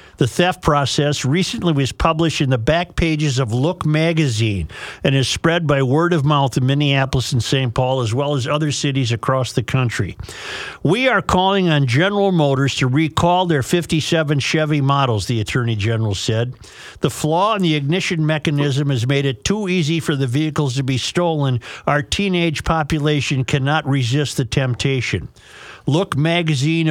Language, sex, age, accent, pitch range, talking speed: English, male, 50-69, American, 135-170 Hz, 165 wpm